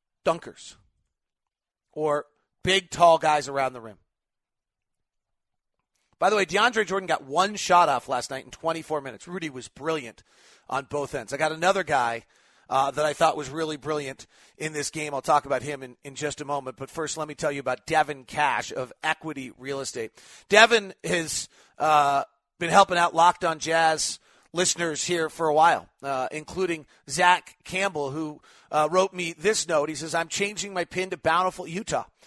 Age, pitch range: 40-59, 145-180 Hz